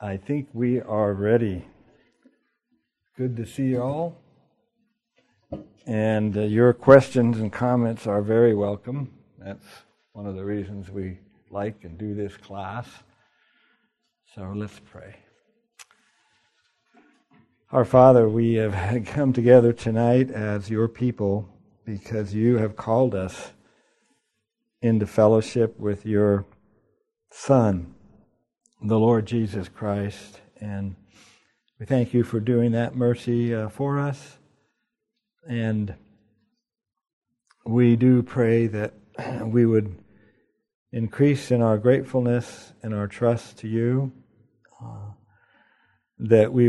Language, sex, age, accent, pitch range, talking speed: English, male, 60-79, American, 105-125 Hz, 110 wpm